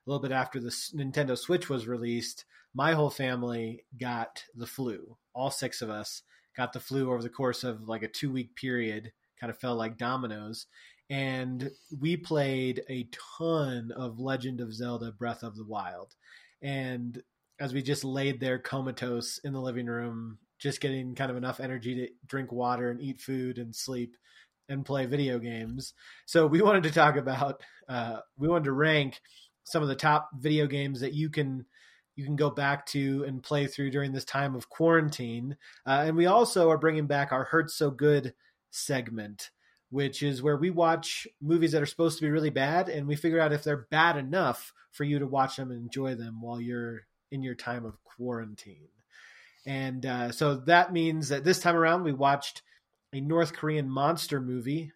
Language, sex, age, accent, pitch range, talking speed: English, male, 30-49, American, 125-150 Hz, 190 wpm